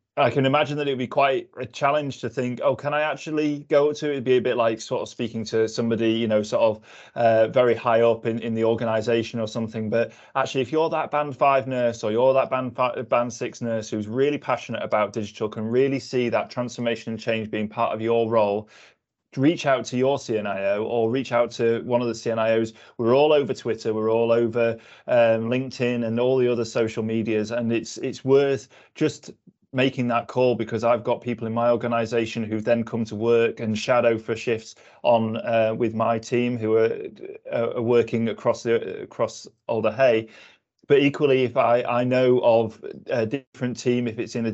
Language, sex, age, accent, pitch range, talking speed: English, male, 20-39, British, 115-125 Hz, 215 wpm